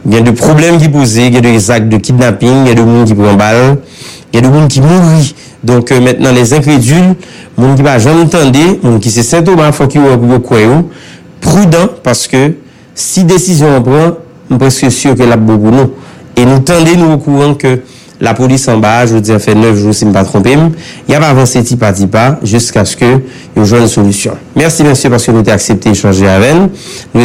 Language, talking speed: English, 240 wpm